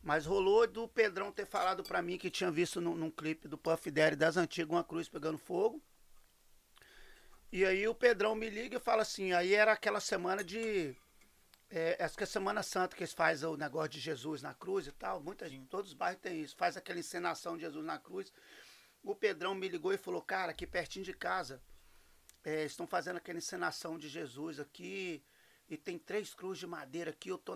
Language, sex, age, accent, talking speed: Portuguese, male, 40-59, Brazilian, 210 wpm